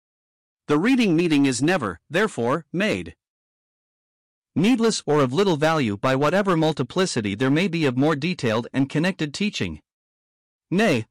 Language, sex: English, male